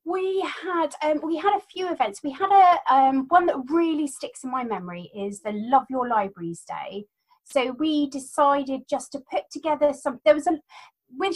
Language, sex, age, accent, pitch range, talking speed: English, female, 30-49, British, 210-300 Hz, 195 wpm